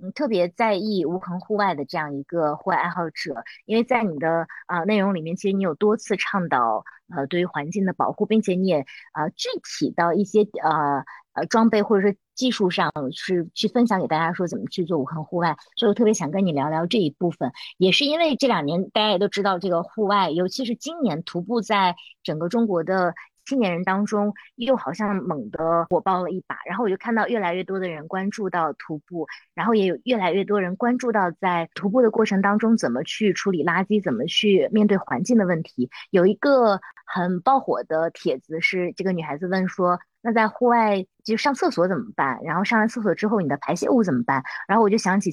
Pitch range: 175-220 Hz